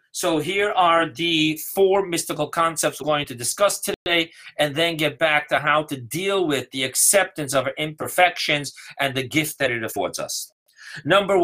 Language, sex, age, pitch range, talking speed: English, male, 40-59, 125-170 Hz, 180 wpm